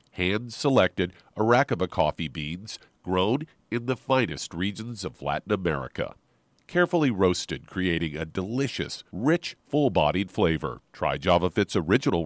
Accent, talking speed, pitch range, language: American, 115 wpm, 95-130 Hz, English